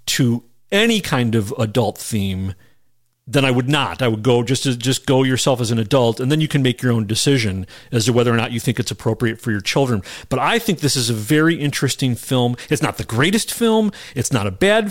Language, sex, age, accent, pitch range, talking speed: English, male, 40-59, American, 110-140 Hz, 240 wpm